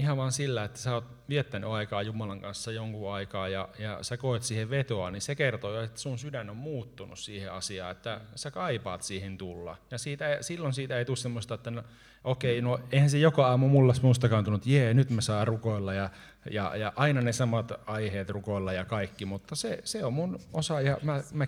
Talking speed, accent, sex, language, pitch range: 210 wpm, native, male, Finnish, 105-135 Hz